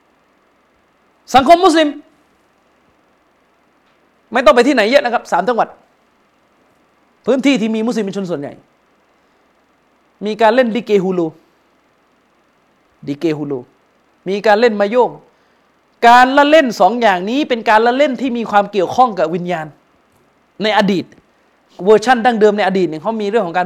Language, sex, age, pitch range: Thai, male, 30-49, 200-275 Hz